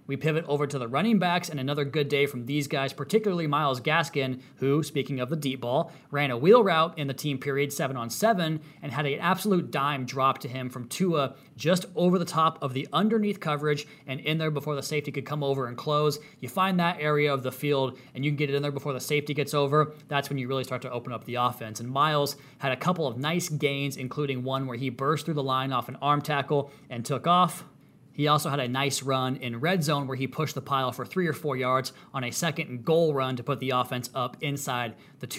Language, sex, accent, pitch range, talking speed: English, male, American, 135-155 Hz, 250 wpm